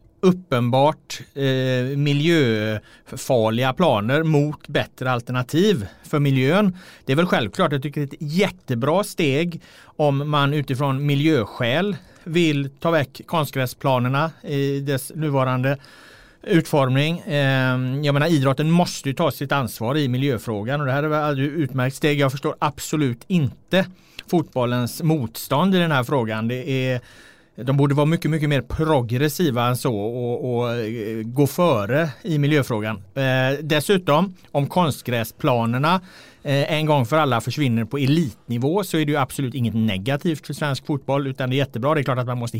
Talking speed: 150 wpm